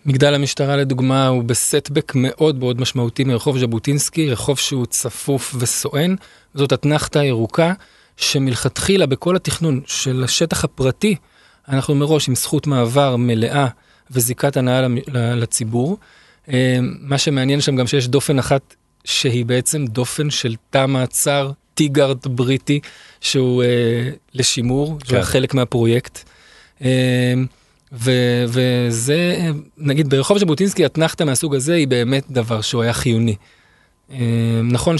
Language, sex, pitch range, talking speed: Hebrew, male, 125-150 Hz, 120 wpm